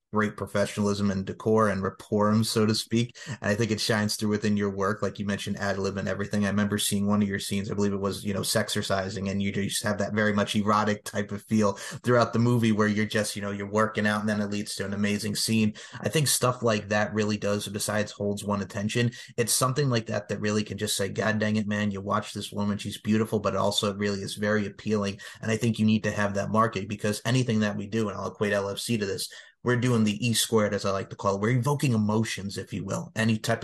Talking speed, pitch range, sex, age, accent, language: 260 wpm, 100-110 Hz, male, 30-49, American, English